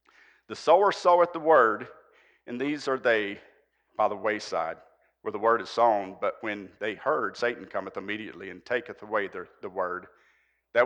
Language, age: English, 50-69